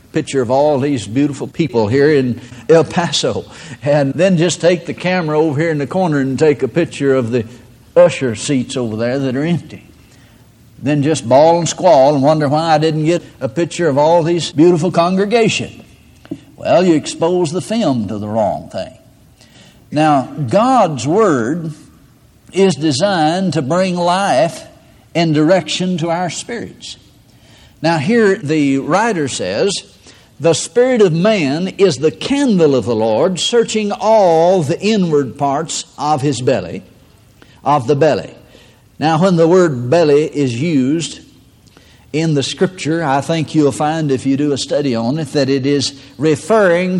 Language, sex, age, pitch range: English, male, 60-79, 130-170 Hz